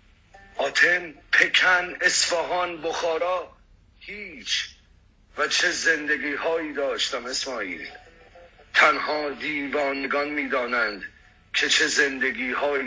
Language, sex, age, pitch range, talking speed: Persian, male, 50-69, 135-175 Hz, 90 wpm